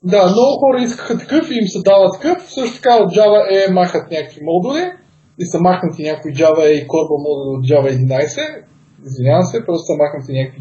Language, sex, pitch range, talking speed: Bulgarian, male, 150-230 Hz, 205 wpm